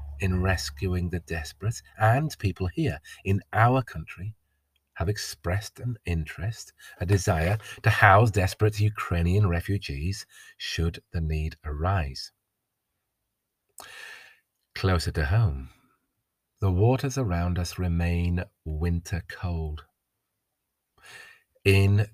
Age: 40-59